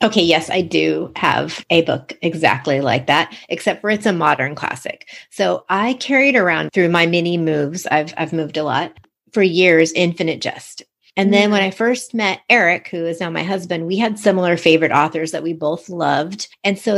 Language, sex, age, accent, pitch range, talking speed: English, female, 30-49, American, 155-190 Hz, 200 wpm